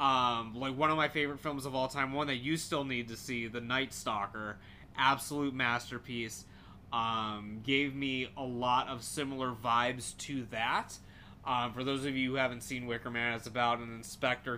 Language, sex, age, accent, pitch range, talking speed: English, male, 20-39, American, 115-140 Hz, 190 wpm